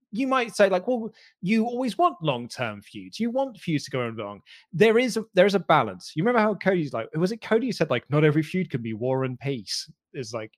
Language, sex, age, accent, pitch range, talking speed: English, male, 20-39, British, 120-190 Hz, 250 wpm